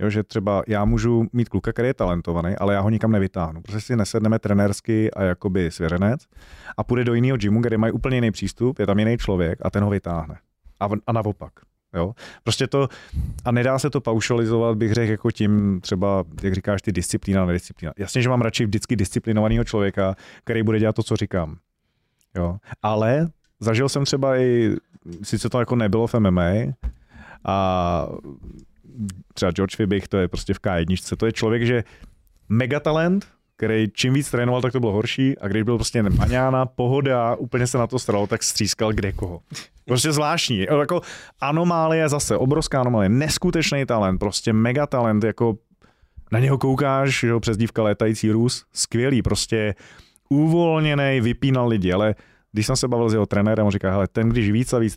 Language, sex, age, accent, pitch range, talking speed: Czech, male, 30-49, native, 100-125 Hz, 175 wpm